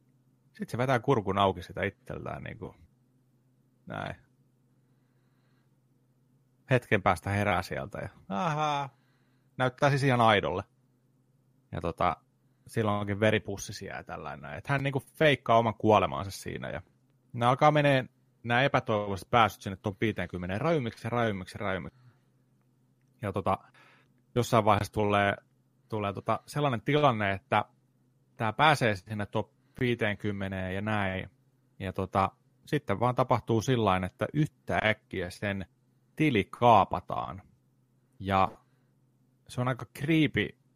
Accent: native